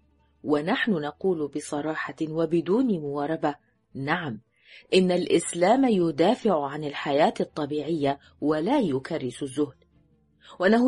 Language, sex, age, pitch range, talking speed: Arabic, female, 30-49, 135-210 Hz, 90 wpm